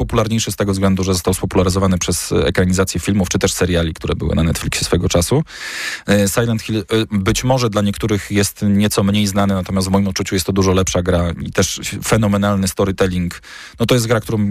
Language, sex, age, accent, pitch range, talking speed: Polish, male, 20-39, native, 95-110 Hz, 190 wpm